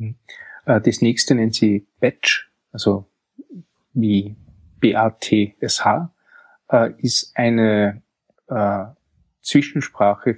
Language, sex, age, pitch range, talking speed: German, male, 20-39, 105-125 Hz, 70 wpm